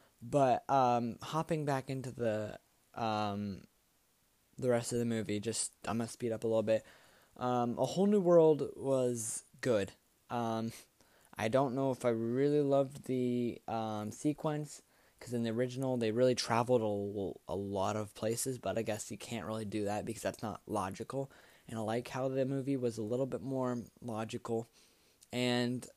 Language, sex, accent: English, male, American